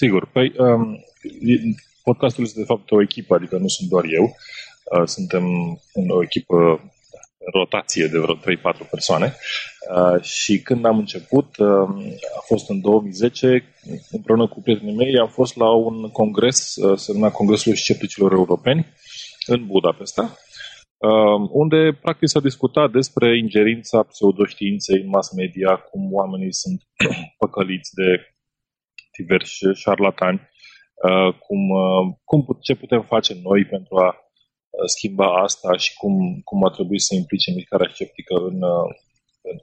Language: Romanian